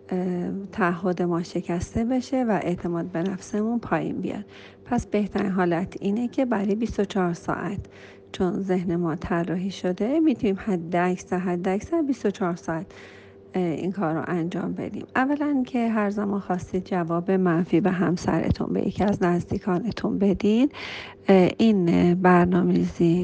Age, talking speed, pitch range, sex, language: 40-59, 135 wpm, 175-215 Hz, female, Persian